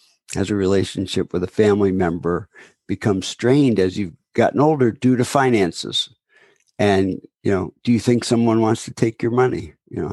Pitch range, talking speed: 95-125 Hz, 180 wpm